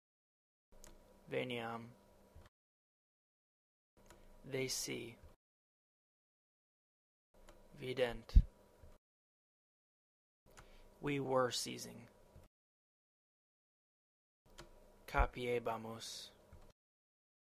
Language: English